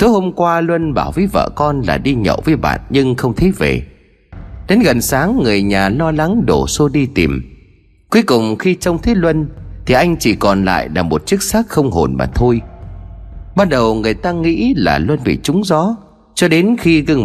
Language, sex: Vietnamese, male